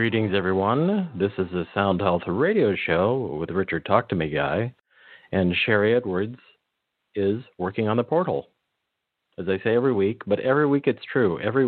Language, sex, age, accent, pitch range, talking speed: English, male, 50-69, American, 85-110 Hz, 175 wpm